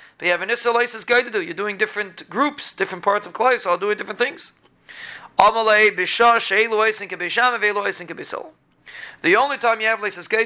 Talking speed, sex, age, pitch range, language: 155 wpm, male, 30-49, 180-230 Hz, English